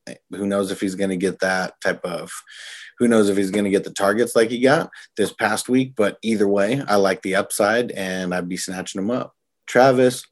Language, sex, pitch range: English, male, 90-105 Hz